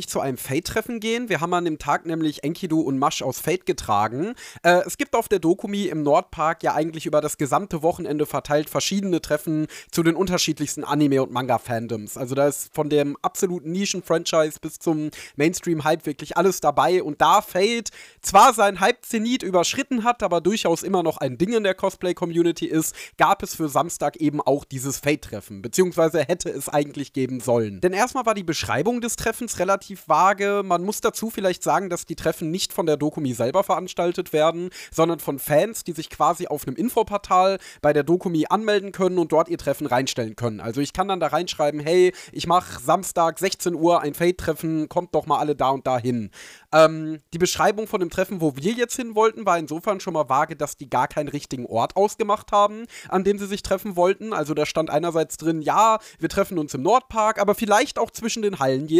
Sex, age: male, 30-49